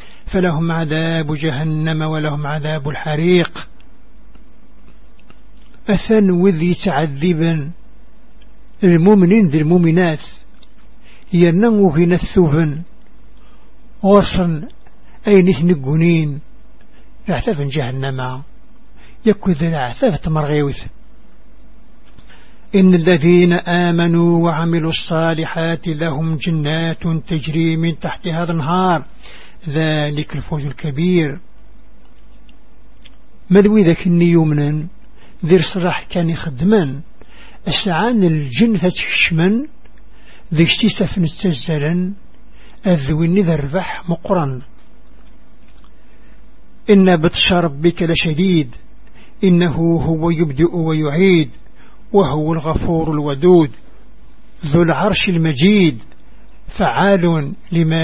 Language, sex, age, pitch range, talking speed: English, male, 60-79, 155-185 Hz, 75 wpm